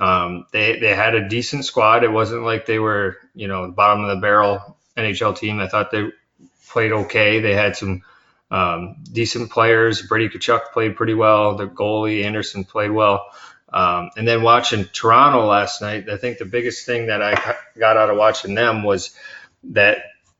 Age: 30-49